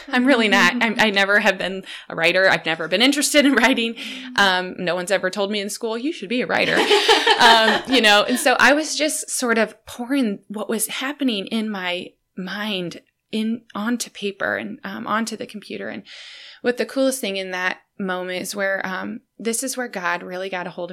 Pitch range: 180-230 Hz